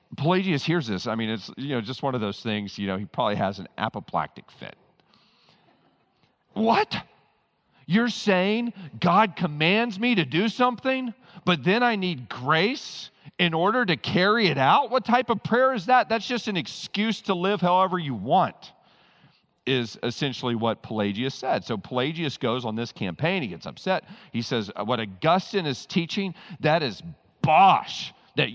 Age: 40-59